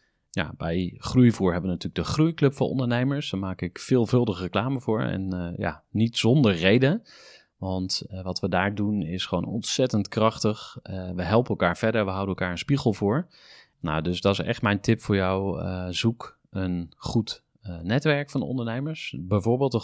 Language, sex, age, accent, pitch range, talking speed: Dutch, male, 30-49, Dutch, 95-120 Hz, 190 wpm